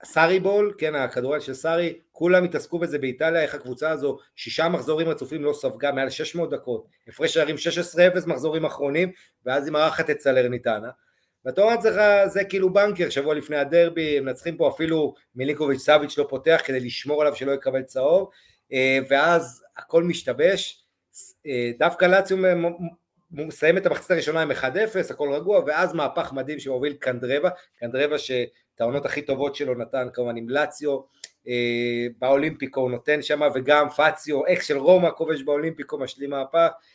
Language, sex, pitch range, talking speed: Hebrew, male, 140-180 Hz, 145 wpm